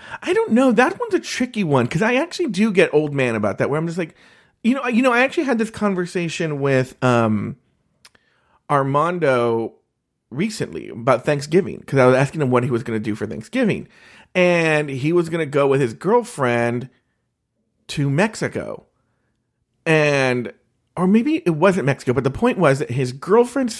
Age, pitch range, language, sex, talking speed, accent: 40-59, 125-190 Hz, English, male, 185 wpm, American